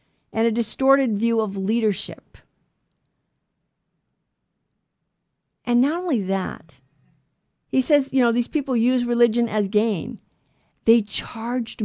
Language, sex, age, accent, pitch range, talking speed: English, female, 50-69, American, 195-250 Hz, 110 wpm